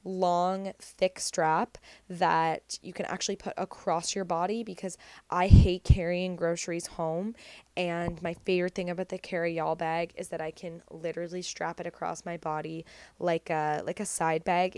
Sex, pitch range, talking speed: female, 170-205 Hz, 170 wpm